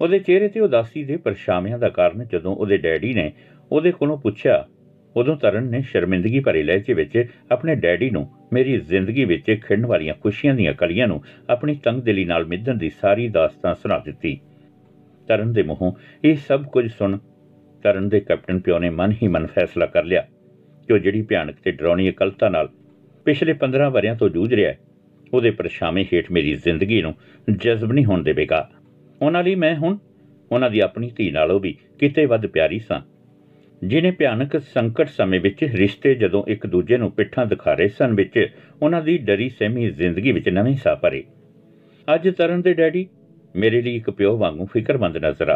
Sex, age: male, 60-79